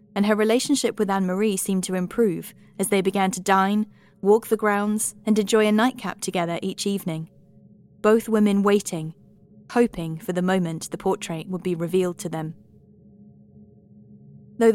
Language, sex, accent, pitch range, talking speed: English, female, British, 170-210 Hz, 155 wpm